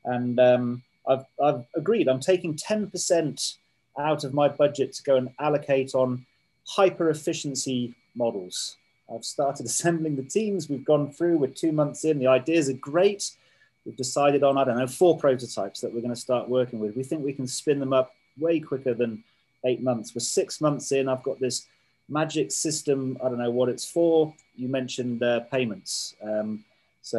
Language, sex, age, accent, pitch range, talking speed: English, male, 30-49, British, 120-145 Hz, 180 wpm